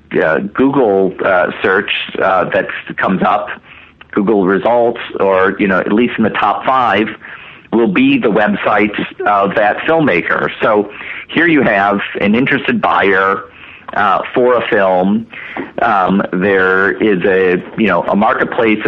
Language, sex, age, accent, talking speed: English, male, 40-59, American, 145 wpm